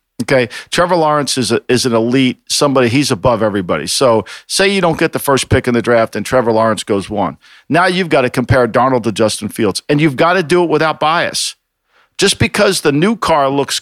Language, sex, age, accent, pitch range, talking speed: English, male, 50-69, American, 125-155 Hz, 220 wpm